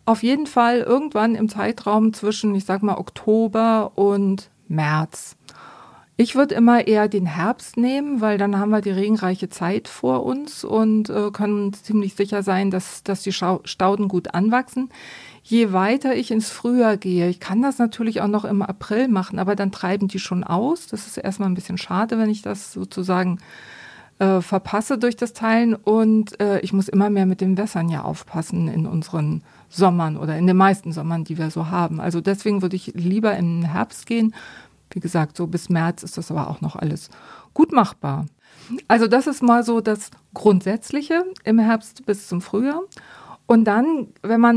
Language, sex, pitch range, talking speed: German, female, 185-225 Hz, 180 wpm